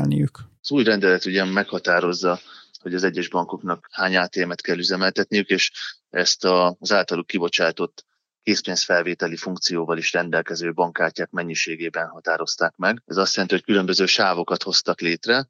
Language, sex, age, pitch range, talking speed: Hungarian, male, 20-39, 90-100 Hz, 130 wpm